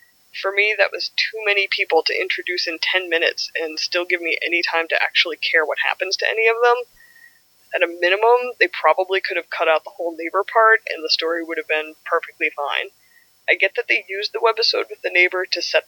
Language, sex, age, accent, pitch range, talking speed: English, female, 20-39, American, 170-245 Hz, 225 wpm